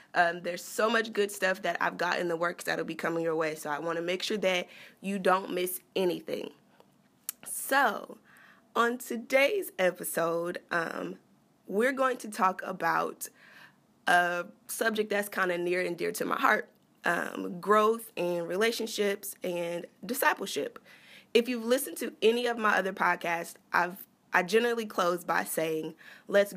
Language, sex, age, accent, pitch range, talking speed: English, female, 20-39, American, 175-220 Hz, 160 wpm